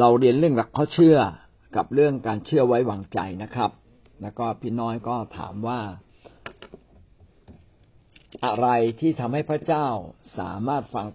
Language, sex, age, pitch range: Thai, male, 60-79, 110-145 Hz